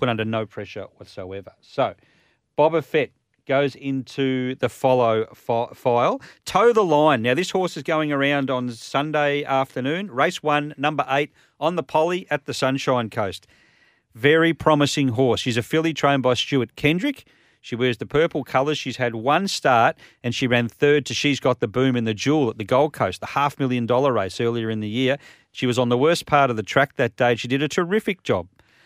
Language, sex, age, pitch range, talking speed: English, male, 40-59, 115-145 Hz, 195 wpm